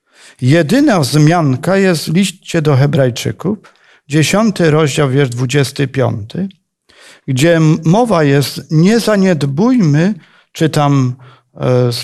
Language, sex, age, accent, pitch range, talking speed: Polish, male, 50-69, native, 135-190 Hz, 90 wpm